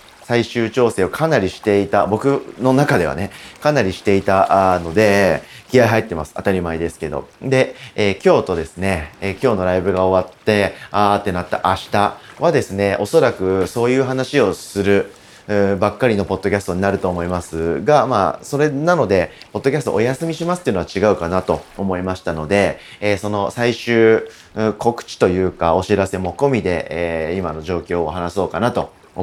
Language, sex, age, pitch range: Japanese, male, 30-49, 90-120 Hz